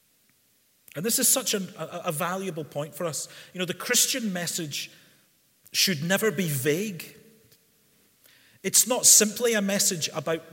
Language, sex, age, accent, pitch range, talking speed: English, male, 40-59, British, 150-195 Hz, 140 wpm